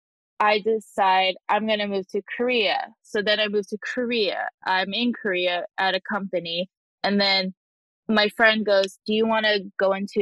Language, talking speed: English, 180 wpm